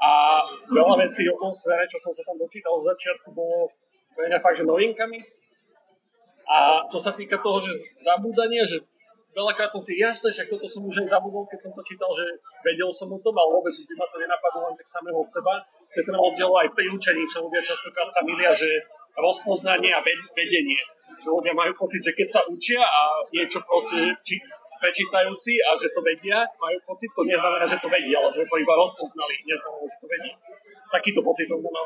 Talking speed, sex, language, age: 205 wpm, male, Slovak, 30-49